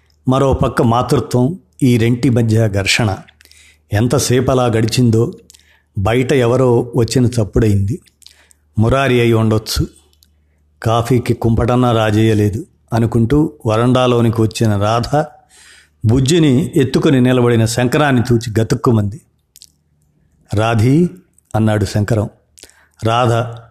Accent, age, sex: native, 50-69, male